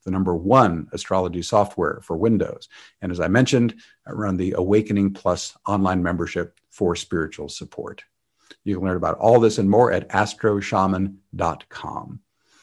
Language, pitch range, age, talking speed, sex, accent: English, 95-115 Hz, 50-69, 145 wpm, male, American